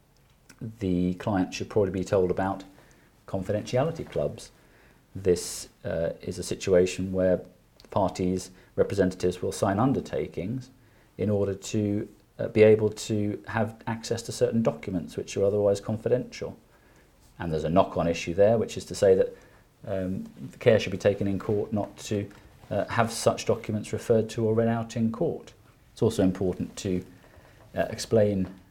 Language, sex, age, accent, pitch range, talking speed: English, male, 40-59, British, 90-110 Hz, 155 wpm